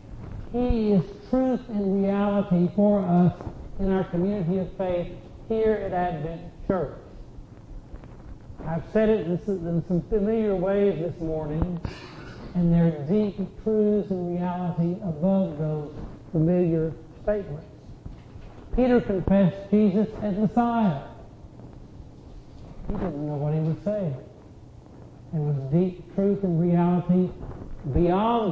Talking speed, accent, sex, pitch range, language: 115 wpm, American, male, 155-195 Hz, English